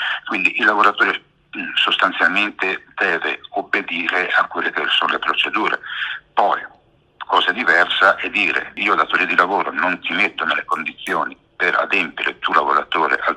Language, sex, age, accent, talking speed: Italian, male, 60-79, native, 150 wpm